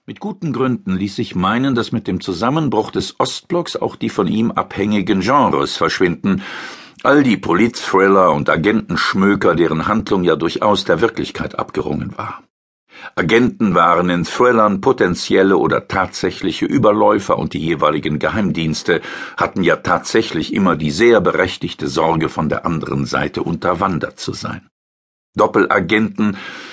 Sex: male